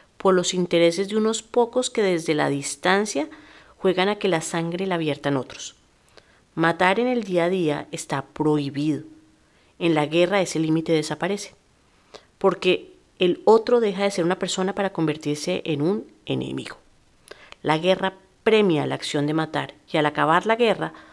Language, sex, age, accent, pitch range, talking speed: Spanish, female, 40-59, Colombian, 155-195 Hz, 160 wpm